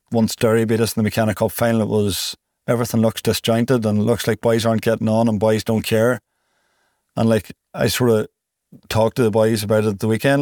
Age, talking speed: 30-49, 230 wpm